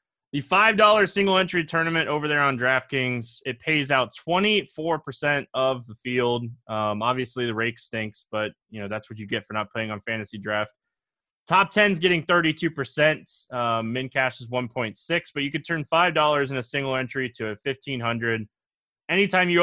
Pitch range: 120-160 Hz